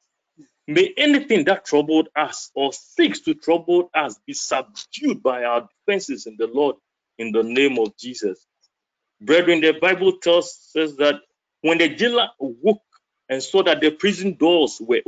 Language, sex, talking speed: English, male, 160 wpm